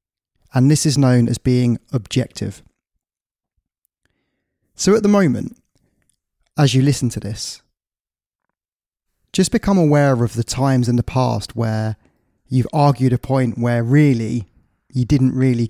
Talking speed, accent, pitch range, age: 135 wpm, British, 115-140 Hz, 20-39